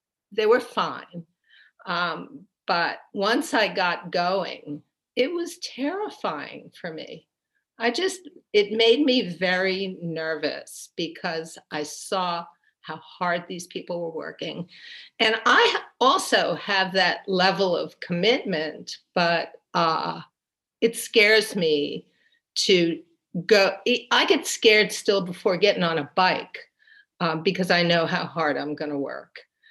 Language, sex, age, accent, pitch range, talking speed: English, female, 50-69, American, 175-245 Hz, 125 wpm